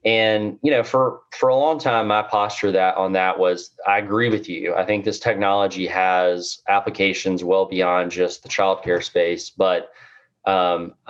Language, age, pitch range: English, 20-39, 90-105 Hz